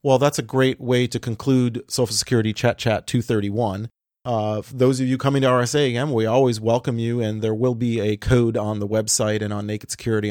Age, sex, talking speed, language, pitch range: 40-59, male, 215 wpm, English, 110-130 Hz